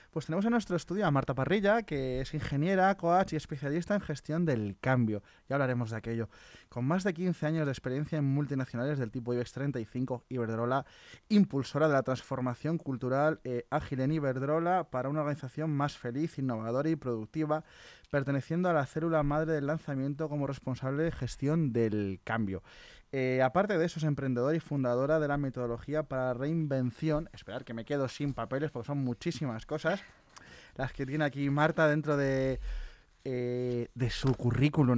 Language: Spanish